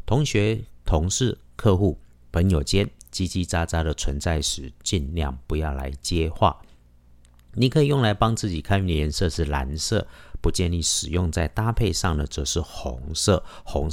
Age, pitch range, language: 50-69, 70-100 Hz, Chinese